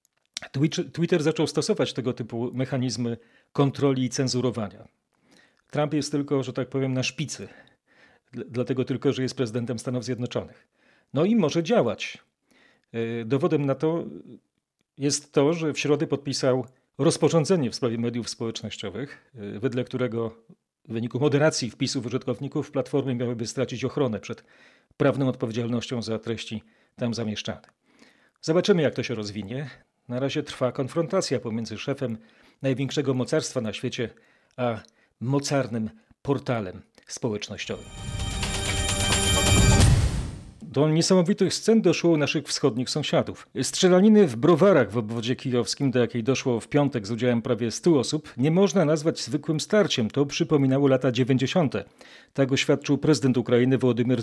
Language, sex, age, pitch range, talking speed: Polish, male, 40-59, 120-150 Hz, 130 wpm